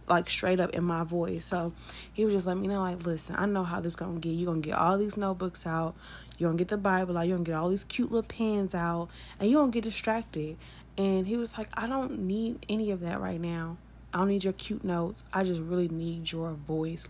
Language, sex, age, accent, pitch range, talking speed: English, female, 20-39, American, 170-195 Hz, 255 wpm